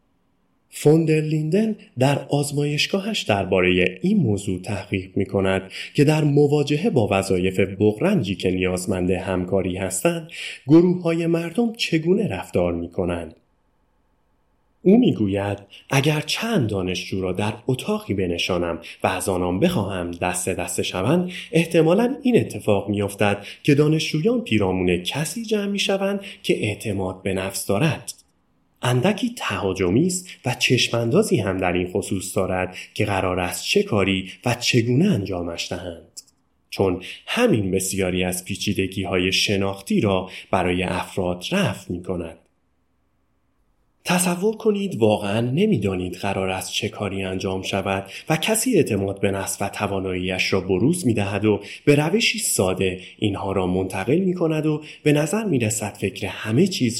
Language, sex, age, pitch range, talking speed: Persian, male, 30-49, 95-150 Hz, 135 wpm